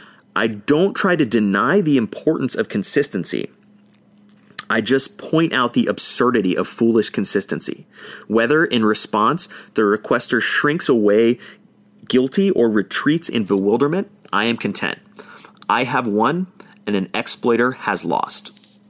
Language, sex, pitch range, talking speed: English, male, 105-145 Hz, 130 wpm